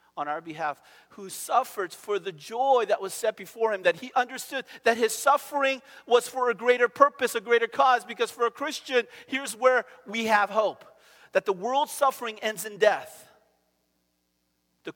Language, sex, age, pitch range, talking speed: English, male, 40-59, 140-230 Hz, 175 wpm